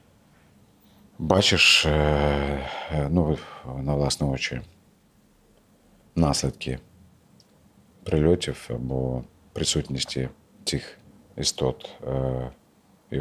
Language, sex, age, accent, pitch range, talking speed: Ukrainian, male, 40-59, native, 70-85 Hz, 55 wpm